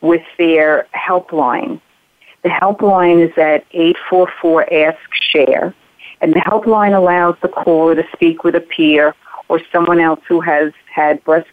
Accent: American